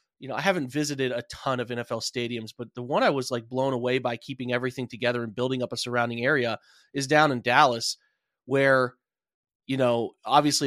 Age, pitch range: 30-49, 130-160 Hz